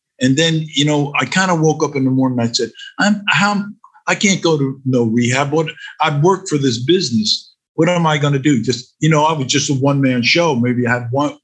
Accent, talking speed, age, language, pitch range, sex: American, 250 wpm, 50-69, English, 120-155 Hz, male